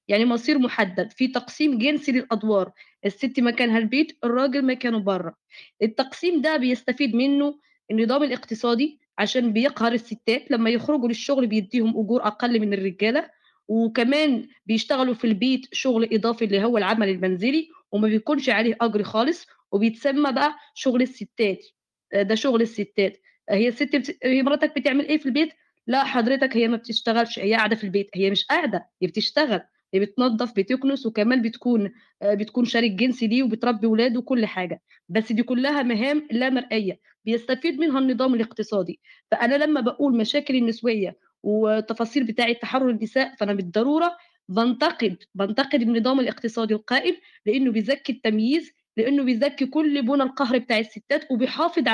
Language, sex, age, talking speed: Arabic, female, 20-39, 145 wpm